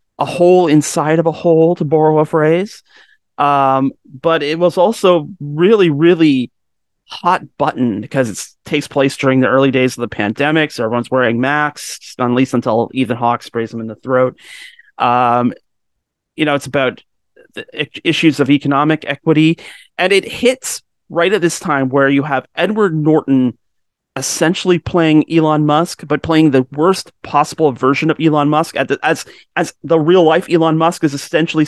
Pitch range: 130-160 Hz